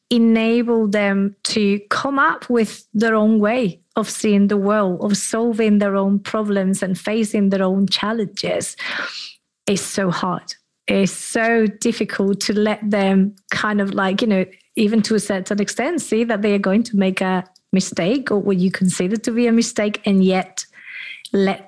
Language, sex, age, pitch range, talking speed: English, female, 30-49, 195-220 Hz, 170 wpm